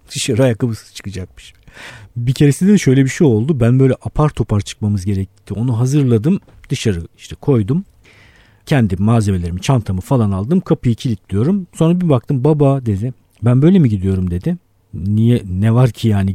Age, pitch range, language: 50-69, 100-145 Hz, Turkish